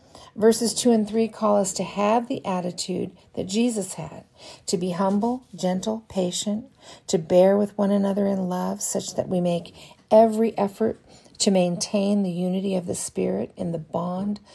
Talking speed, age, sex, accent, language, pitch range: 170 wpm, 50-69, female, American, English, 180-215 Hz